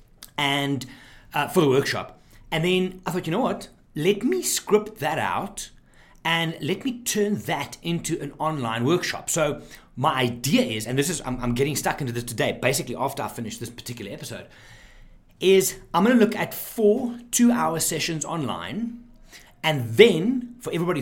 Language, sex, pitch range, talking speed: English, male, 125-180 Hz, 175 wpm